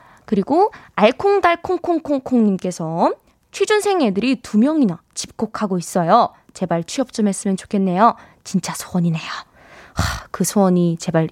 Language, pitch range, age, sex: Korean, 195-320 Hz, 20-39, female